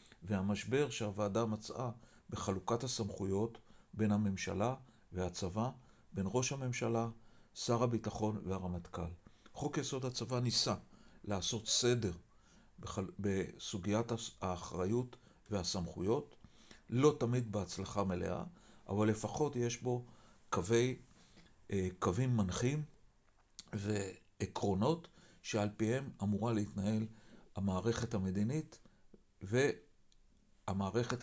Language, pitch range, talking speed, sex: Hebrew, 100-125 Hz, 85 wpm, male